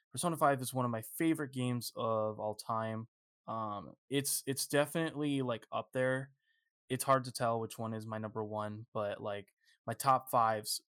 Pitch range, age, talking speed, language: 110-140 Hz, 20-39, 180 wpm, English